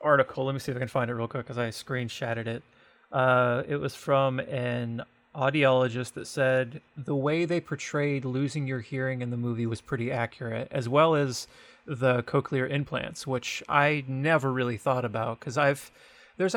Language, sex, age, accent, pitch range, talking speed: English, male, 30-49, American, 125-145 Hz, 185 wpm